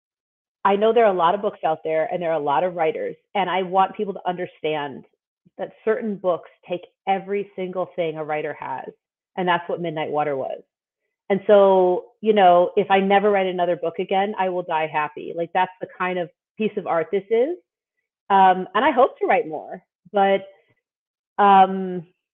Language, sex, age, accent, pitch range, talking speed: English, female, 30-49, American, 170-225 Hz, 195 wpm